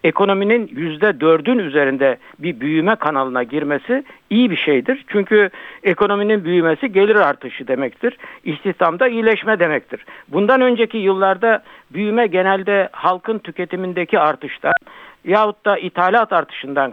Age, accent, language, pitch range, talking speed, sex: 60-79, native, Turkish, 155-225 Hz, 110 wpm, male